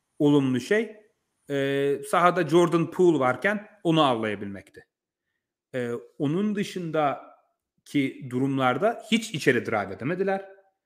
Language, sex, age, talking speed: Turkish, male, 40-59, 90 wpm